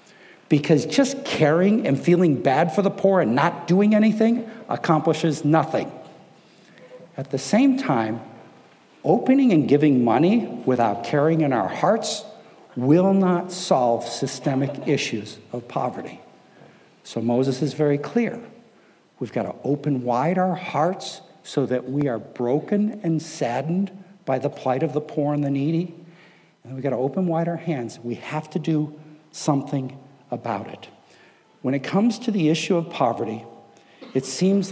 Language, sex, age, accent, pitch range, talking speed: English, male, 60-79, American, 135-185 Hz, 150 wpm